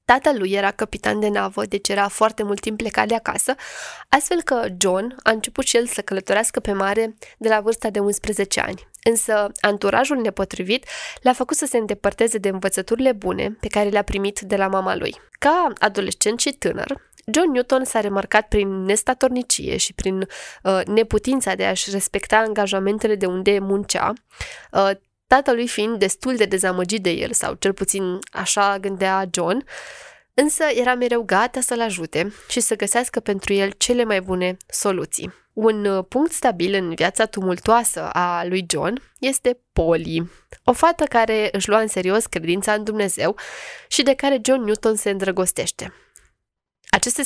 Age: 20-39